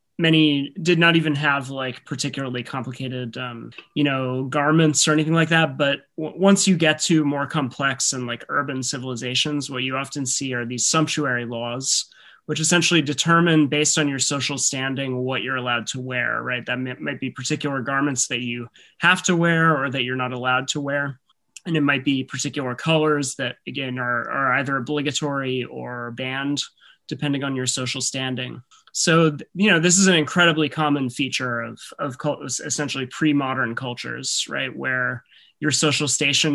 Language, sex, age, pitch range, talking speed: English, male, 30-49, 125-150 Hz, 175 wpm